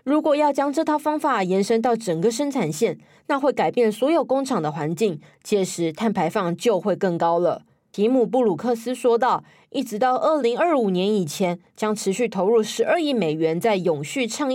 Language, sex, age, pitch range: Chinese, female, 20-39, 195-260 Hz